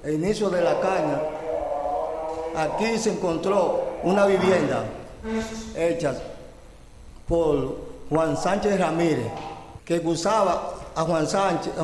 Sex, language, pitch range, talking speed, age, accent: male, Spanish, 155-195 Hz, 95 wpm, 50-69, American